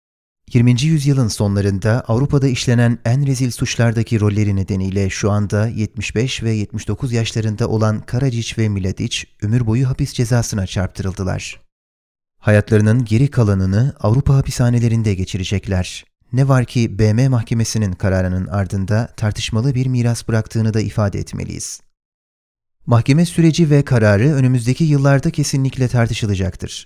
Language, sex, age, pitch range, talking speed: Turkish, male, 30-49, 105-130 Hz, 120 wpm